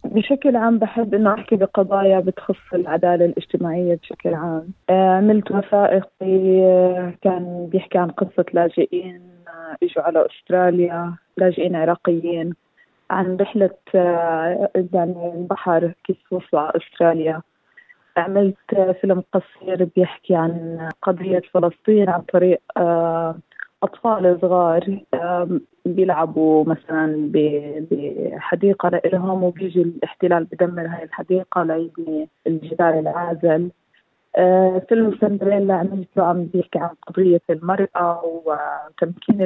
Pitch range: 165-195 Hz